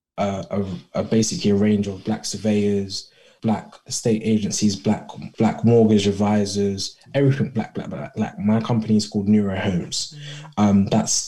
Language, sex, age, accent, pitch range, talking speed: English, male, 20-39, British, 100-115 Hz, 155 wpm